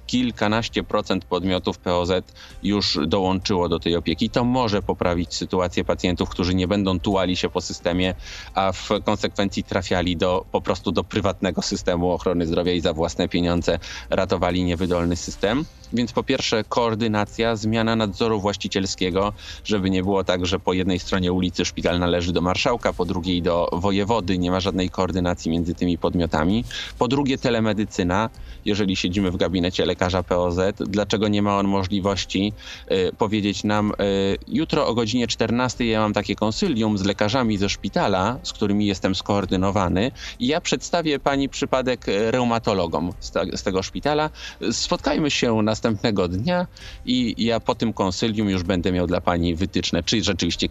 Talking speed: 160 wpm